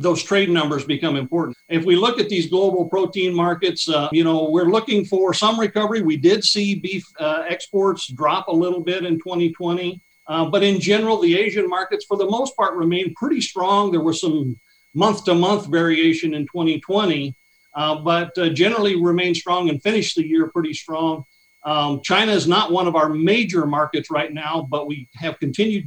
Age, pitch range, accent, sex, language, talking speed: 50-69, 150-190 Hz, American, male, English, 195 wpm